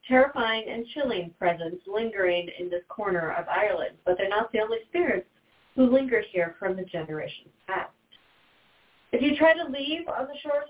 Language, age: English, 40-59